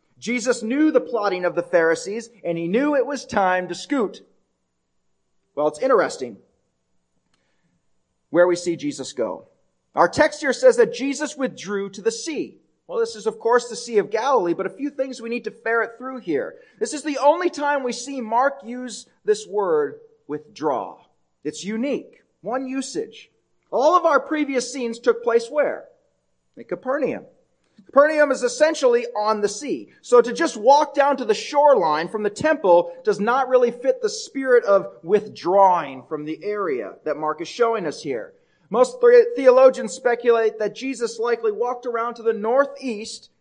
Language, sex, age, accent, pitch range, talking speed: English, male, 40-59, American, 195-285 Hz, 170 wpm